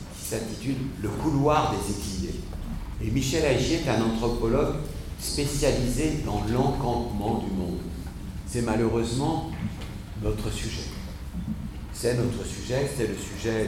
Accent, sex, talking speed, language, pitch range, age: French, male, 115 wpm, French, 90-115 Hz, 60-79